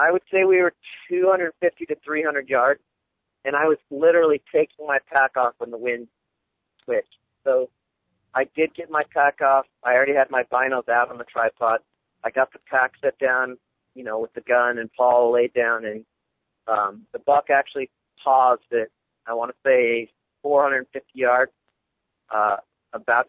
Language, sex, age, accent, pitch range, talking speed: English, male, 40-59, American, 115-145 Hz, 175 wpm